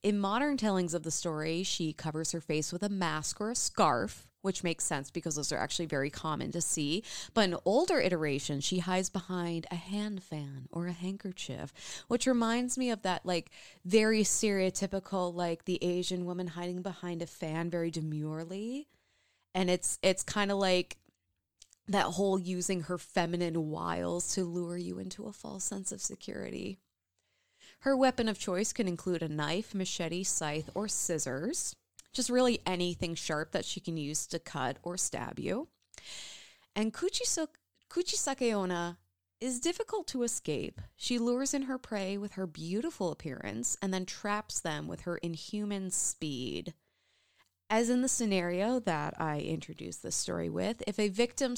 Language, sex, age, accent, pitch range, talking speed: English, female, 20-39, American, 165-220 Hz, 165 wpm